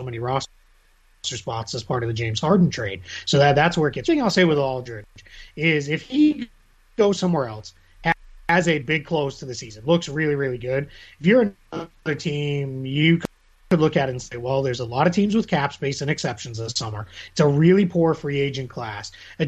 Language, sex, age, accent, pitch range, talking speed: English, male, 30-49, American, 125-165 Hz, 210 wpm